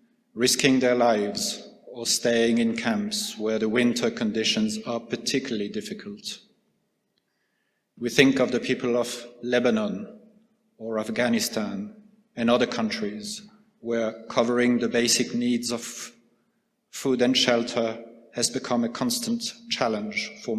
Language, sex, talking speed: English, male, 120 wpm